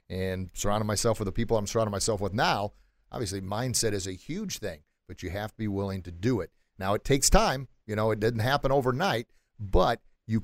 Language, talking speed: English, 220 wpm